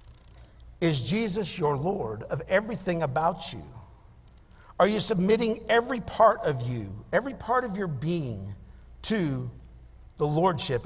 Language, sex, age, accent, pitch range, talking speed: English, male, 50-69, American, 145-220 Hz, 125 wpm